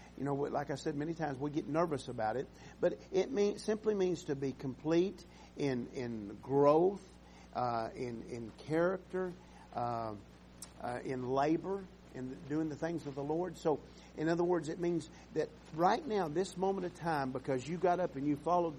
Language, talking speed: English, 185 wpm